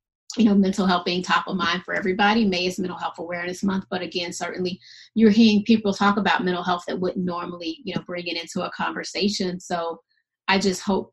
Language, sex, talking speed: English, female, 215 wpm